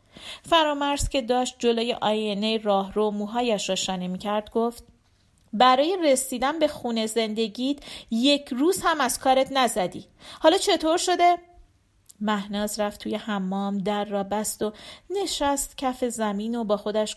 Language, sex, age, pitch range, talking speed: Persian, female, 40-59, 205-260 Hz, 145 wpm